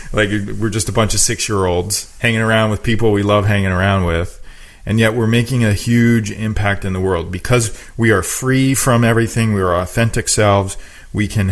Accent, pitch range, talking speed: American, 90-110 Hz, 200 wpm